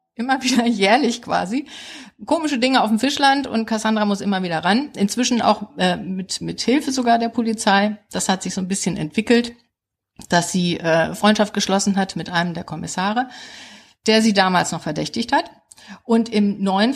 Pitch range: 190-240 Hz